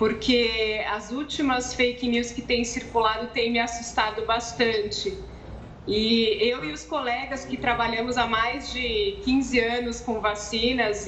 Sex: female